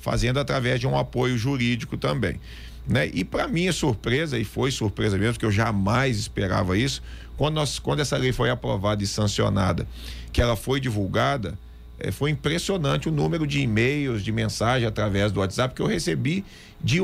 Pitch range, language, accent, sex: 105-140 Hz, Portuguese, Brazilian, male